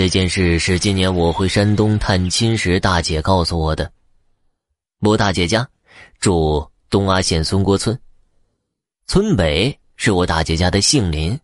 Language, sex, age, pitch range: Chinese, male, 20-39, 85-115 Hz